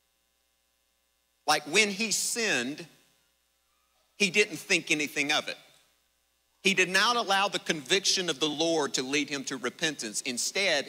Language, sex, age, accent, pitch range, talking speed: English, male, 50-69, American, 130-195 Hz, 140 wpm